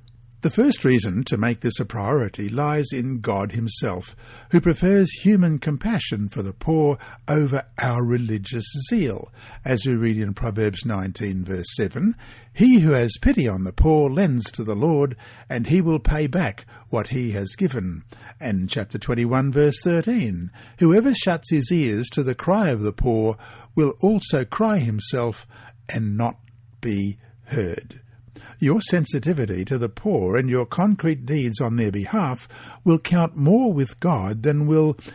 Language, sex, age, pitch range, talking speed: English, male, 60-79, 115-160 Hz, 160 wpm